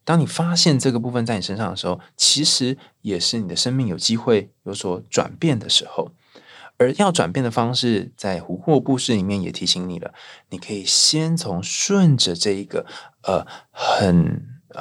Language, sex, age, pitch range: Chinese, male, 20-39, 100-150 Hz